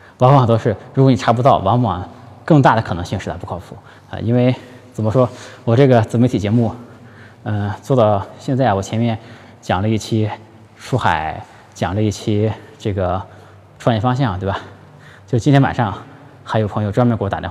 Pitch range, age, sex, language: 100-125 Hz, 20-39, male, Chinese